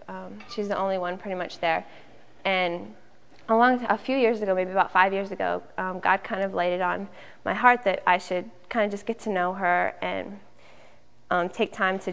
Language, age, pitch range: English, 10-29, 175-200 Hz